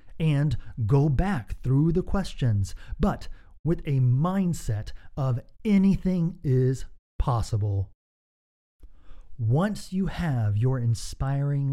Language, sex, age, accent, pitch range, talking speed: English, male, 40-59, American, 95-160 Hz, 95 wpm